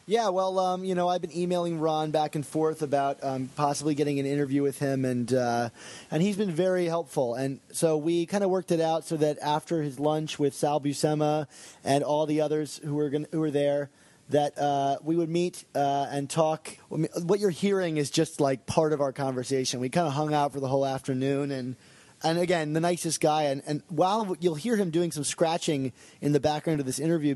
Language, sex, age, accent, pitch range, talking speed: English, male, 20-39, American, 140-165 Hz, 225 wpm